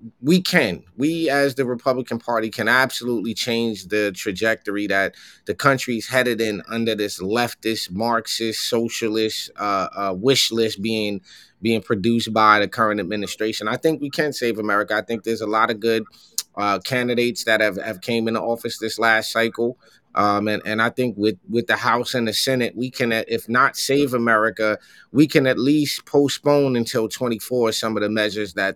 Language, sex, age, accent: English, male, 20-39, American